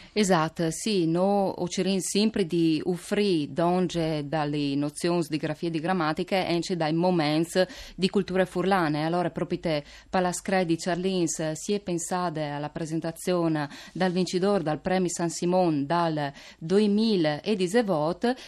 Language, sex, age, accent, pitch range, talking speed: Italian, female, 30-49, native, 160-195 Hz, 130 wpm